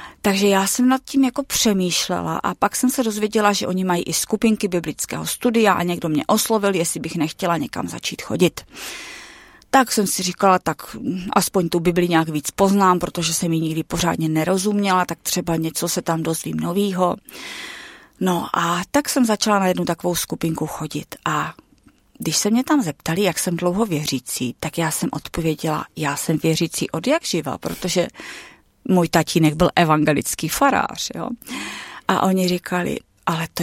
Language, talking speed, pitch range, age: Czech, 170 wpm, 170-220 Hz, 30-49